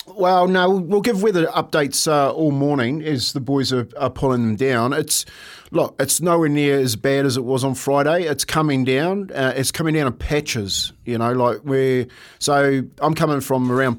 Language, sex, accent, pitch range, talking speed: English, male, Australian, 115-145 Hz, 200 wpm